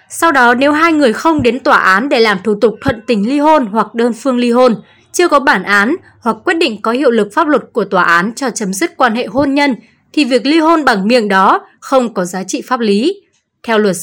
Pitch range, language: 220-300 Hz, Vietnamese